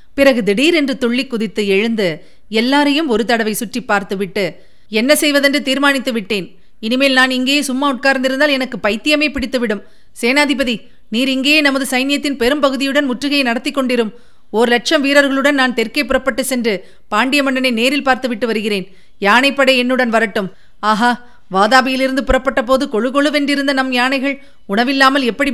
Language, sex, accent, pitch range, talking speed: Tamil, female, native, 225-280 Hz, 135 wpm